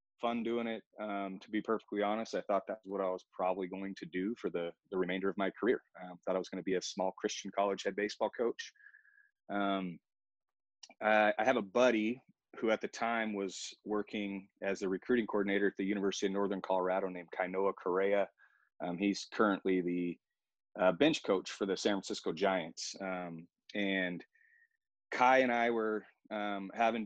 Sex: male